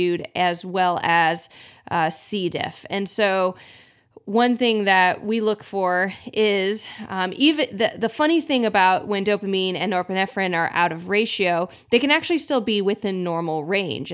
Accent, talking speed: American, 160 wpm